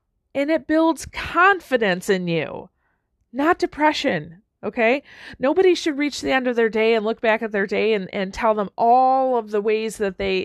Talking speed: 190 wpm